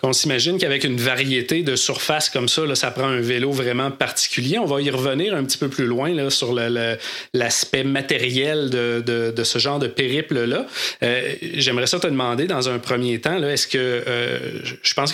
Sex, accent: male, Canadian